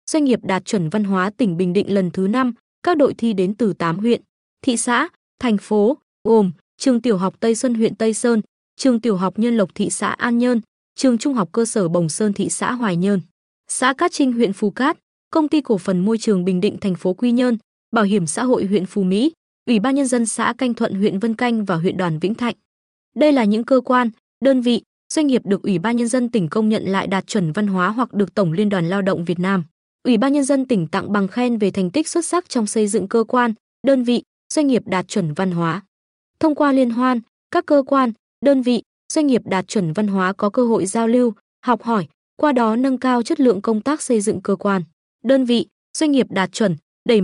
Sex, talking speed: female, 240 wpm